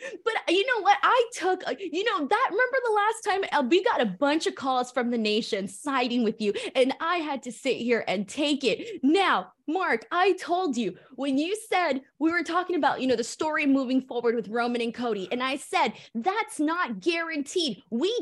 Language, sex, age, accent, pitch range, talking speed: English, female, 20-39, American, 230-330 Hz, 210 wpm